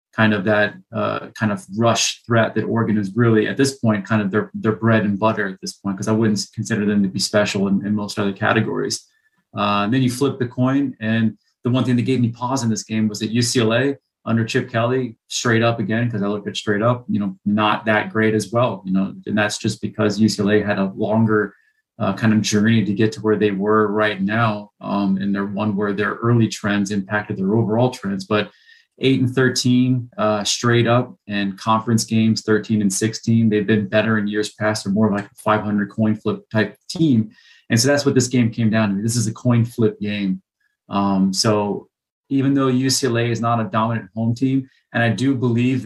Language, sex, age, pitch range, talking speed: English, male, 30-49, 105-120 Hz, 225 wpm